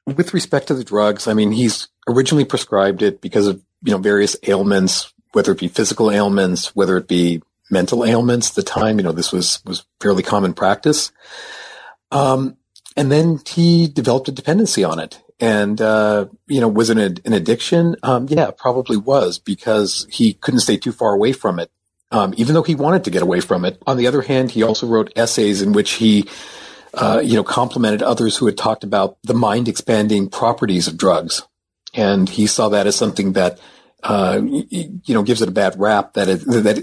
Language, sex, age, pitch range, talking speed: English, male, 40-59, 100-130 Hz, 195 wpm